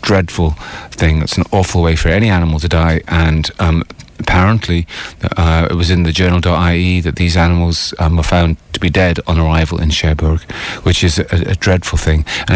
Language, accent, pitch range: English, British, 80-90 Hz